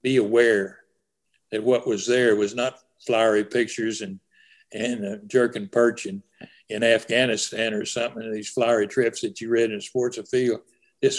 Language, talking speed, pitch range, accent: English, 160 wpm, 115-155 Hz, American